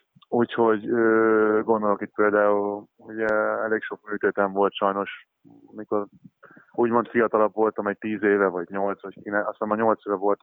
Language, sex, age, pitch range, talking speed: Hungarian, male, 20-39, 100-110 Hz, 150 wpm